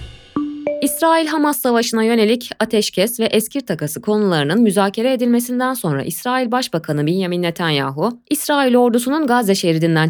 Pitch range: 175-270 Hz